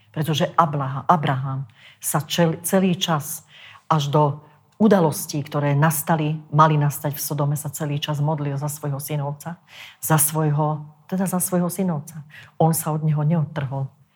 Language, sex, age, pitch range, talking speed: Slovak, female, 40-59, 145-165 Hz, 140 wpm